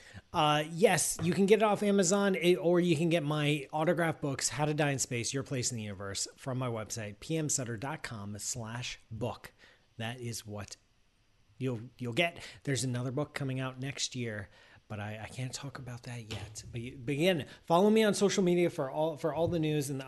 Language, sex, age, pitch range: English, male, 30-49, 120-150 Hz